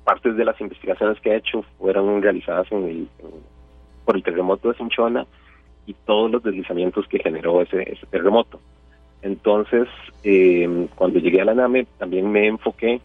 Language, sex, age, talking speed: Spanish, male, 30-49, 150 wpm